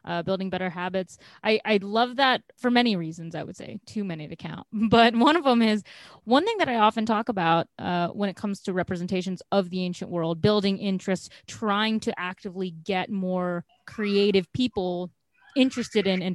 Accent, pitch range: American, 180-225 Hz